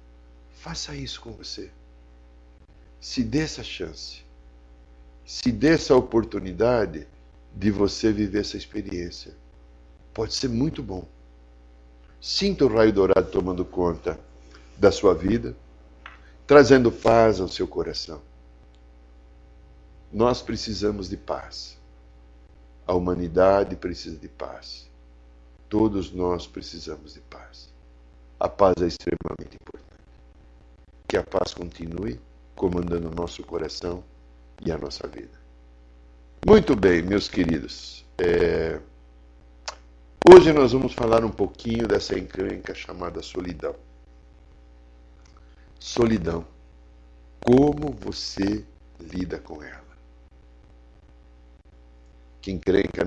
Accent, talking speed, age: Brazilian, 100 wpm, 60-79